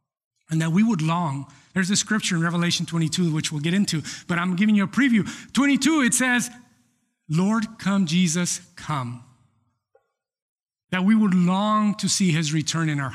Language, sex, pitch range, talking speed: English, male, 155-220 Hz, 175 wpm